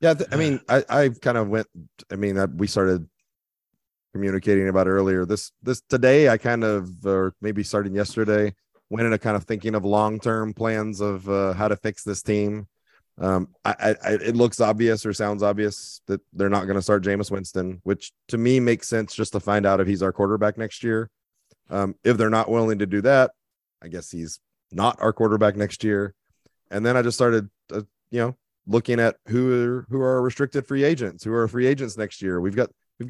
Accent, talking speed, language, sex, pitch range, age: American, 205 wpm, English, male, 100-120 Hz, 30-49